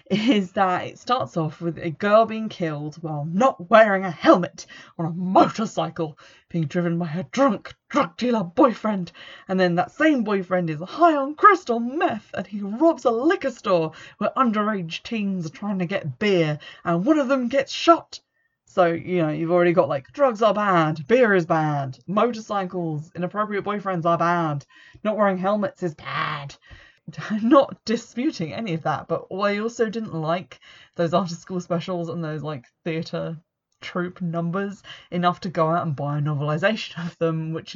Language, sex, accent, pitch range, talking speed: English, female, British, 160-215 Hz, 175 wpm